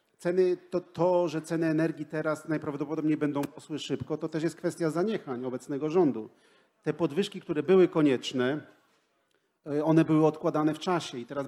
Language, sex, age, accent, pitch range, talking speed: Polish, male, 40-59, native, 145-175 Hz, 155 wpm